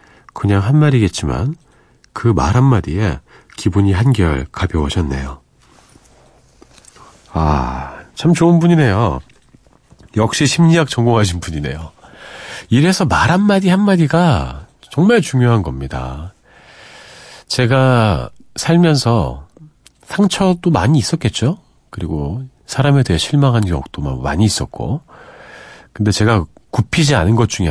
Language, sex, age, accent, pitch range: Korean, male, 40-59, native, 85-140 Hz